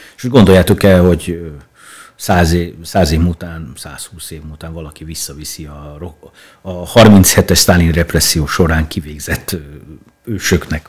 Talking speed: 115 wpm